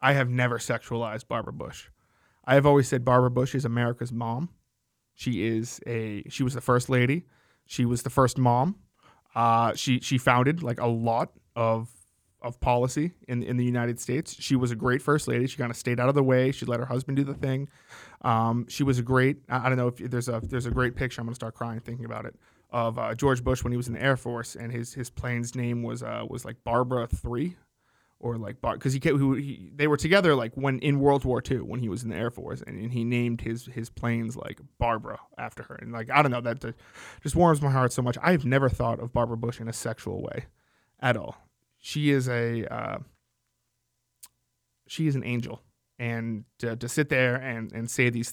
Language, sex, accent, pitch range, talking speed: English, male, American, 115-135 Hz, 230 wpm